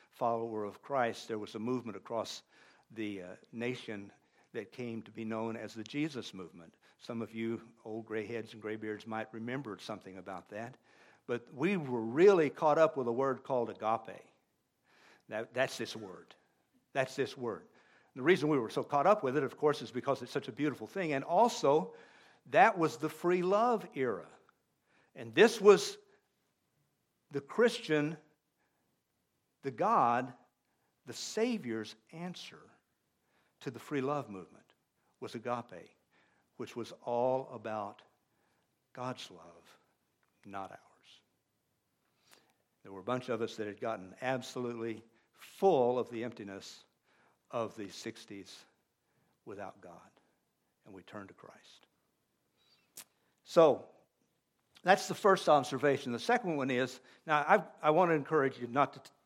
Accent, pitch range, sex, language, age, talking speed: American, 115-155 Hz, male, English, 60-79, 150 wpm